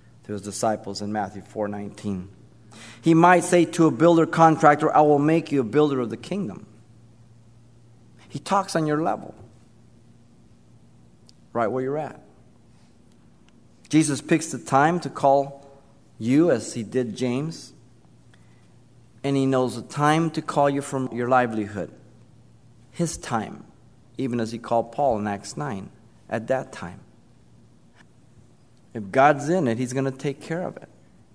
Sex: male